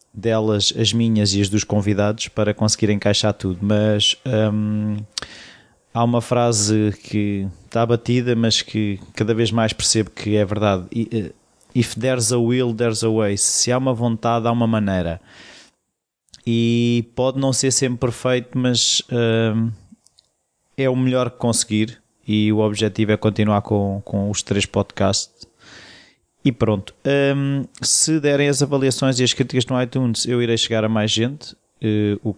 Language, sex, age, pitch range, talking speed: Portuguese, male, 20-39, 105-120 Hz, 155 wpm